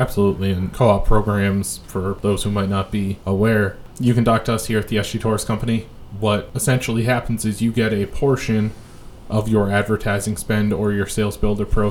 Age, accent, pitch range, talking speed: 20-39, American, 100-110 Hz, 200 wpm